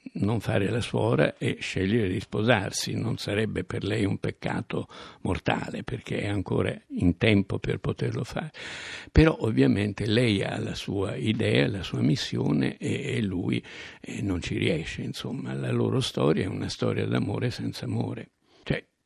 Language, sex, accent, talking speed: Italian, male, native, 155 wpm